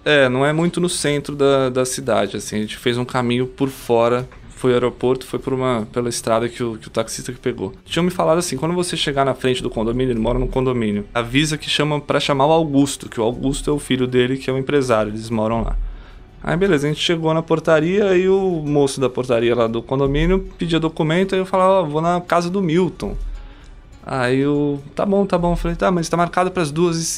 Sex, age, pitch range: male, 20-39, 130-170 Hz